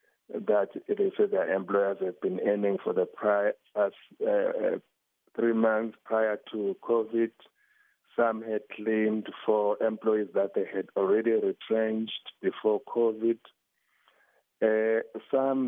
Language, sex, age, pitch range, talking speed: English, male, 50-69, 105-130 Hz, 130 wpm